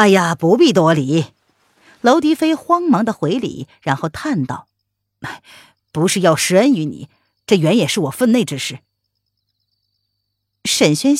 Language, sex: Chinese, female